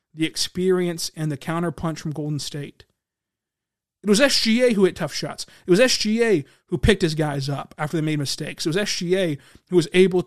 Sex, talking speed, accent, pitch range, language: male, 195 wpm, American, 155-195 Hz, English